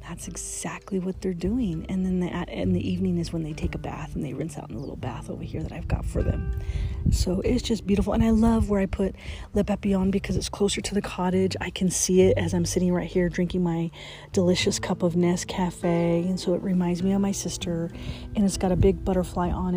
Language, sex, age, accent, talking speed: English, female, 30-49, American, 250 wpm